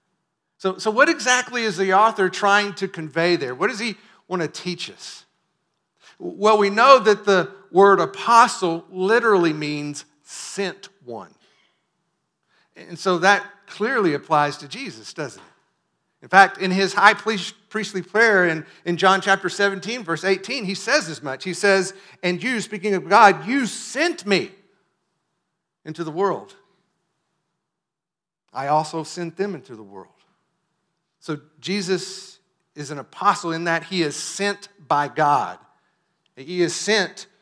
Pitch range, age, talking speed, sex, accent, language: 165-200 Hz, 50-69, 145 wpm, male, American, English